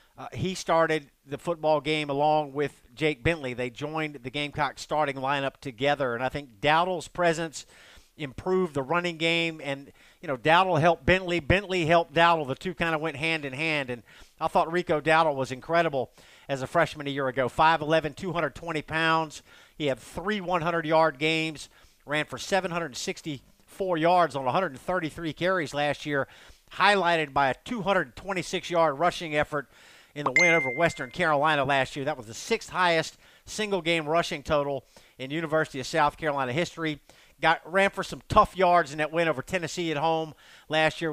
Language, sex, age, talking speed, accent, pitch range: English, male, 50-69, 165 wpm, American, 145-175 Hz